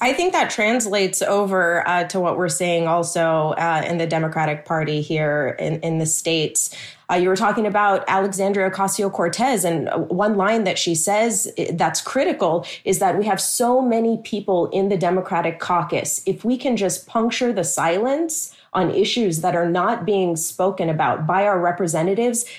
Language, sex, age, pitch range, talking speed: English, female, 30-49, 175-210 Hz, 175 wpm